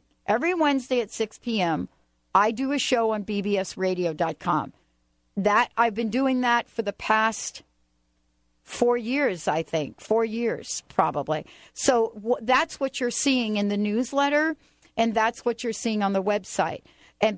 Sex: female